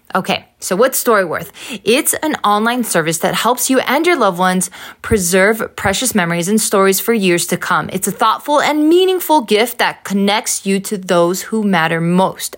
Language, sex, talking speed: English, female, 180 wpm